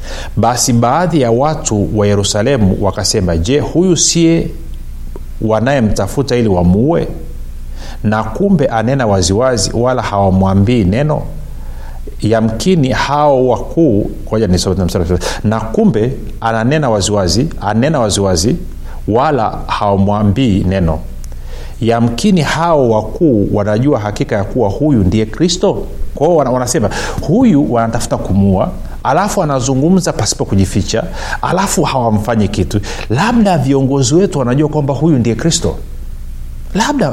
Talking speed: 105 wpm